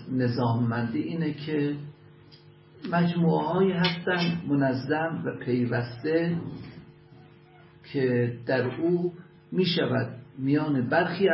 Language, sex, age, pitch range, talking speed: Persian, male, 50-69, 130-165 Hz, 85 wpm